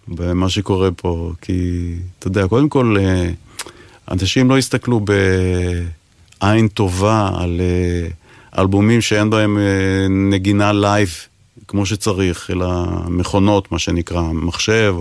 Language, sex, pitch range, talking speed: Hebrew, male, 95-115 Hz, 105 wpm